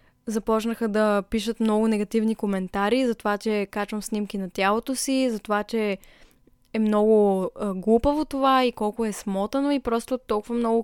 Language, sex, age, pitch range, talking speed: Bulgarian, female, 10-29, 205-240 Hz, 160 wpm